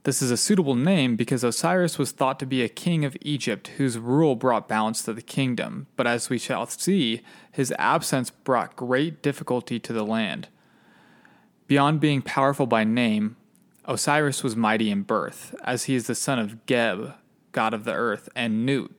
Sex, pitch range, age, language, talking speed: male, 115-140 Hz, 20-39, English, 185 wpm